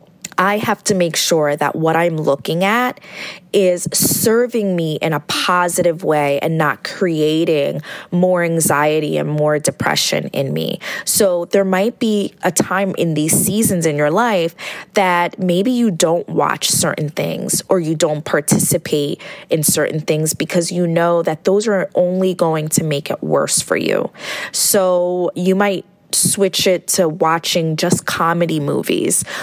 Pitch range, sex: 160-190 Hz, female